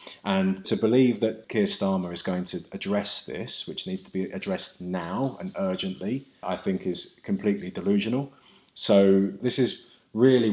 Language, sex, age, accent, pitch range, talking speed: English, male, 30-49, British, 90-125 Hz, 160 wpm